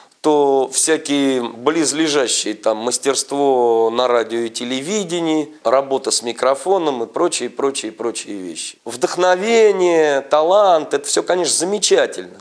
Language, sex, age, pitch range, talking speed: Russian, male, 40-59, 120-180 Hz, 100 wpm